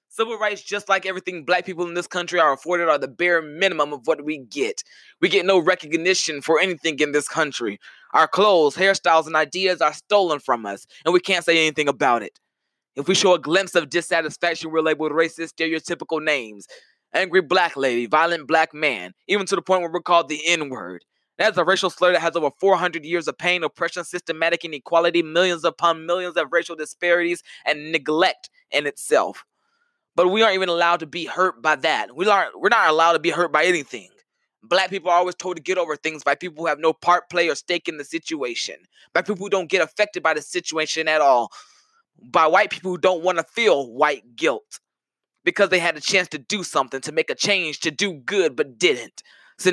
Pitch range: 160-190 Hz